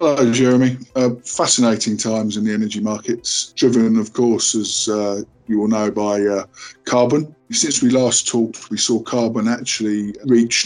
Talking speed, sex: 165 wpm, male